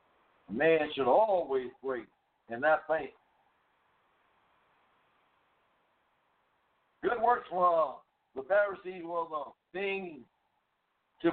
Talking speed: 90 wpm